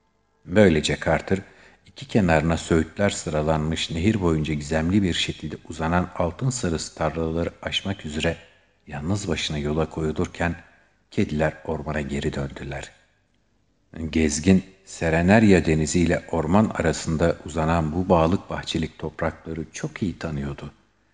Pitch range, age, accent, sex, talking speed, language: 75-90 Hz, 50-69, native, male, 110 wpm, Turkish